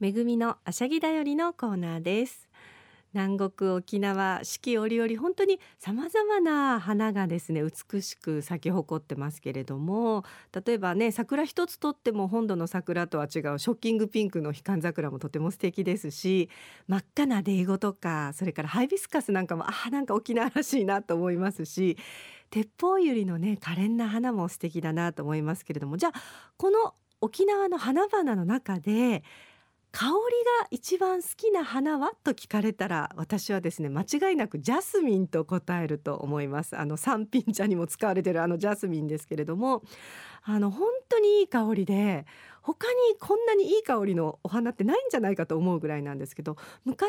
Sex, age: female, 40-59